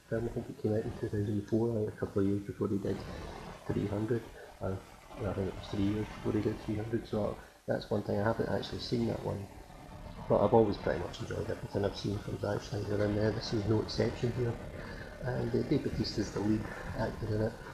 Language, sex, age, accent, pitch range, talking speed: English, male, 40-59, British, 105-120 Hz, 230 wpm